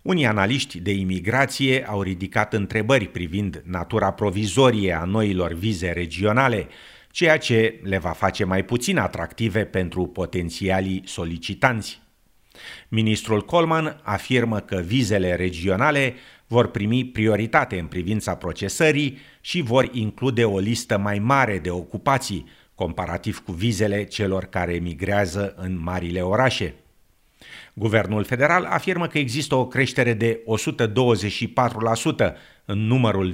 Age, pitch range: 50-69, 95-120 Hz